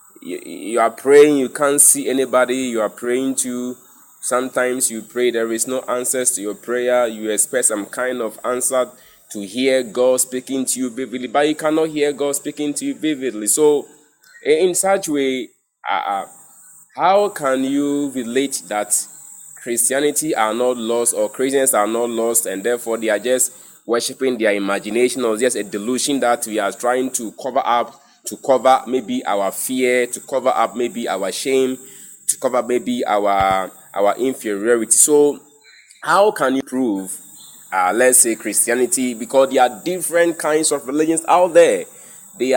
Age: 20-39